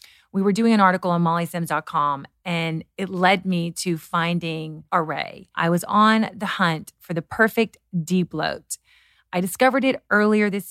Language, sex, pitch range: English, female, 170-220 Hz